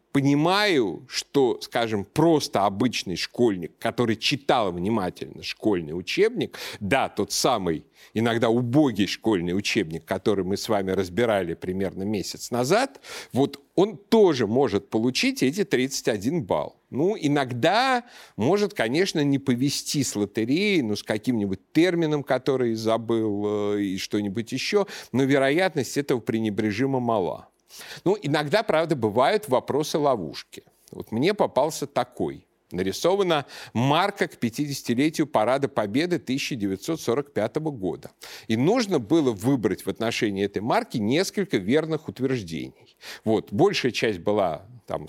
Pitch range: 105-155 Hz